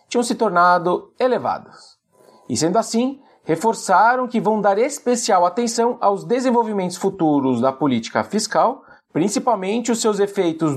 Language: Portuguese